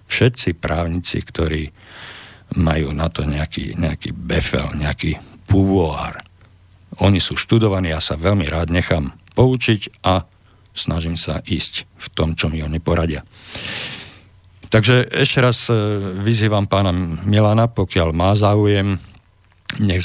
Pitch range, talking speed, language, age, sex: 85-100 Hz, 120 wpm, Slovak, 50-69, male